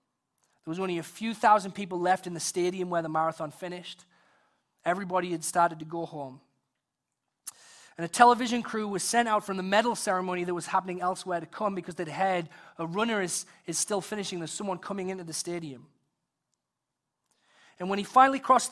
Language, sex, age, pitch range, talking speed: English, male, 30-49, 150-190 Hz, 185 wpm